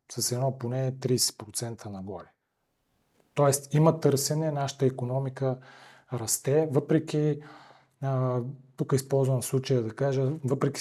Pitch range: 125-155 Hz